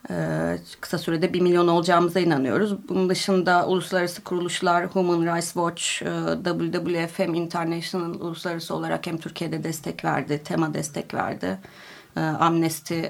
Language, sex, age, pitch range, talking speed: Turkish, female, 30-49, 165-195 Hz, 115 wpm